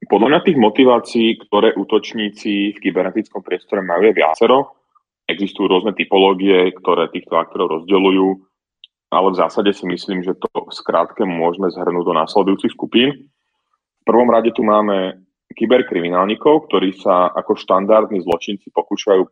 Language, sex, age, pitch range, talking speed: Slovak, male, 30-49, 90-110 Hz, 135 wpm